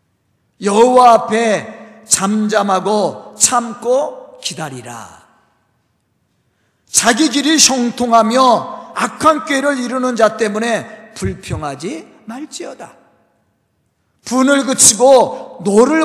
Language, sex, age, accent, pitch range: Korean, male, 50-69, native, 205-300 Hz